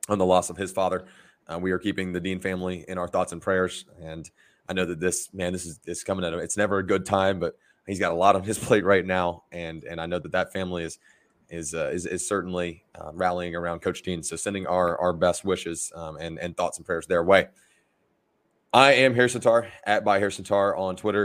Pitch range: 90-100 Hz